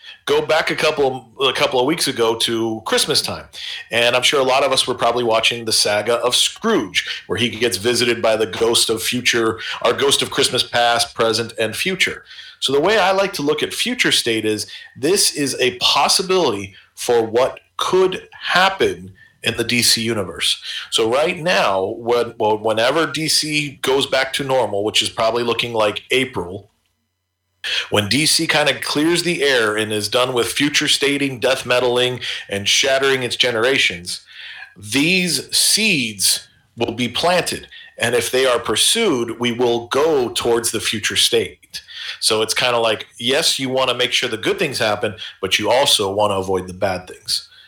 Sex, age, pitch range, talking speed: male, 40-59, 115-150 Hz, 180 wpm